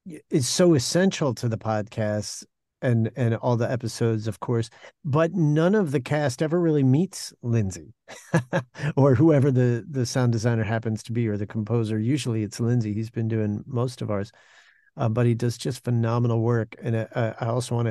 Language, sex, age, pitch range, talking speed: English, male, 50-69, 110-125 Hz, 185 wpm